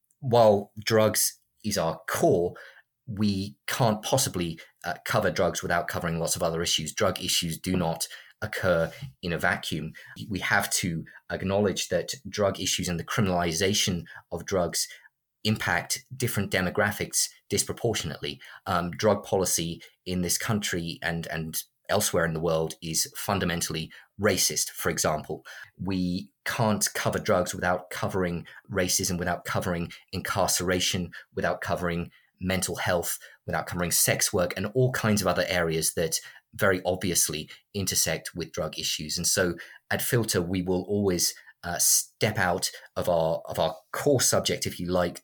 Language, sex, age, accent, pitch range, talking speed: English, male, 30-49, British, 85-100 Hz, 145 wpm